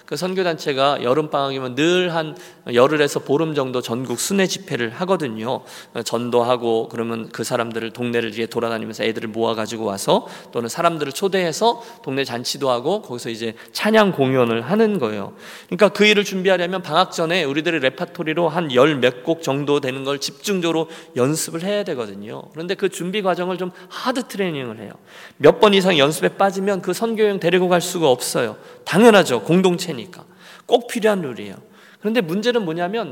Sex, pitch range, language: male, 135-195 Hz, Korean